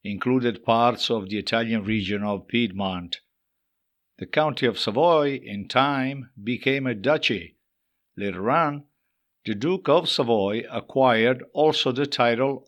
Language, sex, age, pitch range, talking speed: English, male, 60-79, 110-135 Hz, 130 wpm